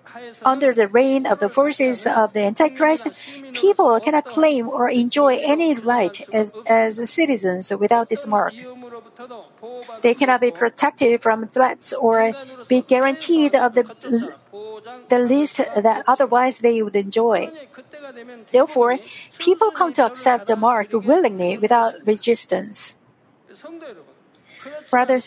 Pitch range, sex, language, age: 225-285 Hz, female, Korean, 50-69